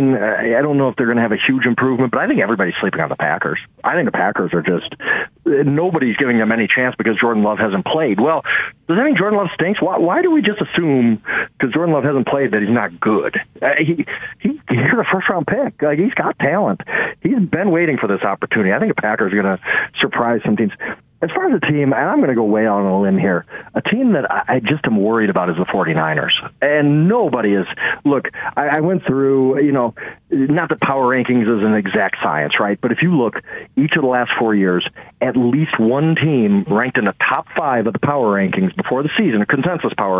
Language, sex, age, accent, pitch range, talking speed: English, male, 40-59, American, 115-160 Hz, 235 wpm